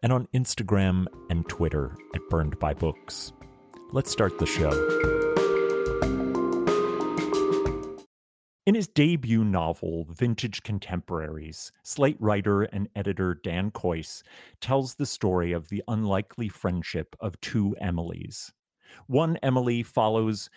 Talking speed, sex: 110 wpm, male